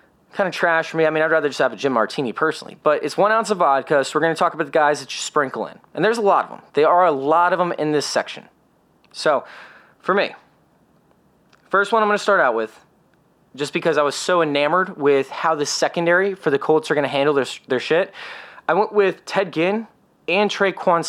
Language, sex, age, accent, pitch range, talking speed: English, male, 20-39, American, 160-205 Hz, 245 wpm